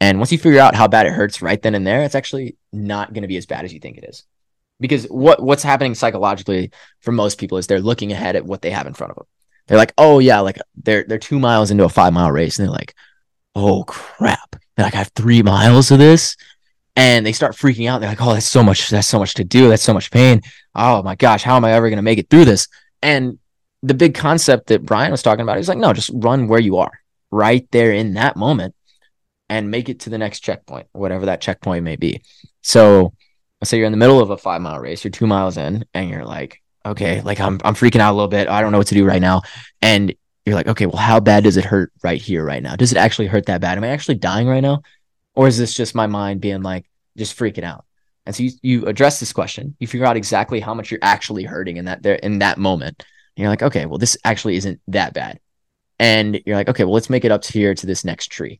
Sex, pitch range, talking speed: male, 100-120 Hz, 265 wpm